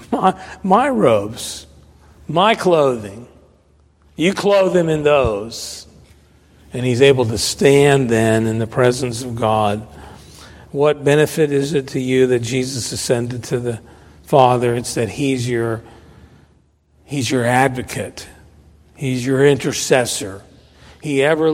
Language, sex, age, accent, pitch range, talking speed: English, male, 50-69, American, 100-145 Hz, 125 wpm